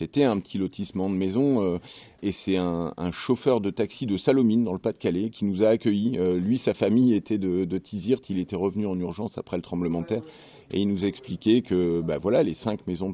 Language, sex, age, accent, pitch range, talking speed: French, male, 40-59, French, 85-105 Hz, 235 wpm